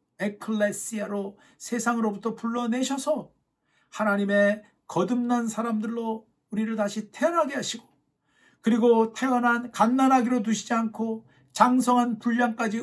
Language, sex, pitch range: Korean, male, 210-245 Hz